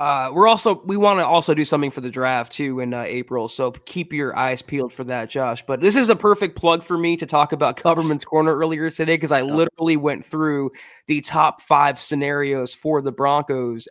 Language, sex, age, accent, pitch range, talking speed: English, male, 20-39, American, 145-170 Hz, 225 wpm